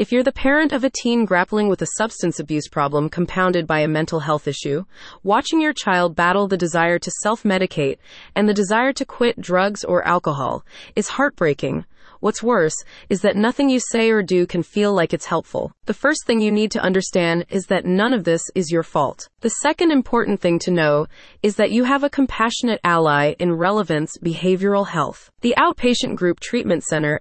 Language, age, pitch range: English, 20-39, 170-235 Hz